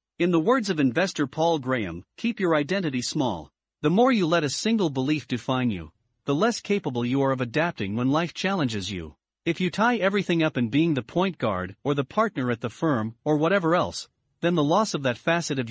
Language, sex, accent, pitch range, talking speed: English, male, American, 130-185 Hz, 220 wpm